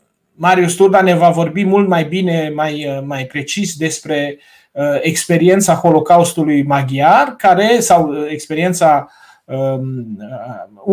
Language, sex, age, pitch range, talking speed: Romanian, male, 30-49, 155-190 Hz, 110 wpm